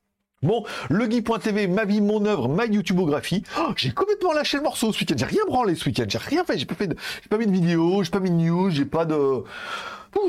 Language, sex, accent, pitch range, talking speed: French, male, French, 130-205 Hz, 245 wpm